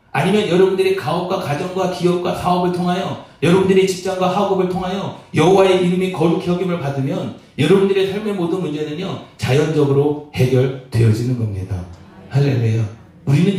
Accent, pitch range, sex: native, 115-165 Hz, male